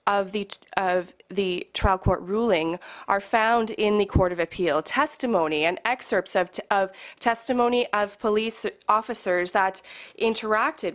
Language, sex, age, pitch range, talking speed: English, female, 30-49, 185-225 Hz, 140 wpm